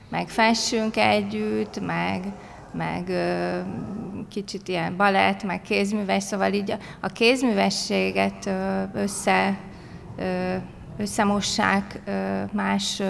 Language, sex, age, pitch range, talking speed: Hungarian, female, 30-49, 190-215 Hz, 80 wpm